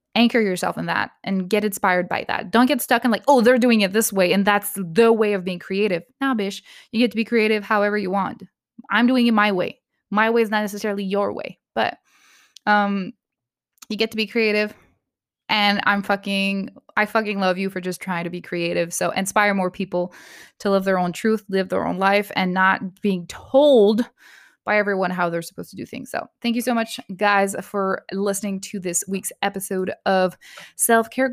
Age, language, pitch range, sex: 20-39, English, 195-235 Hz, female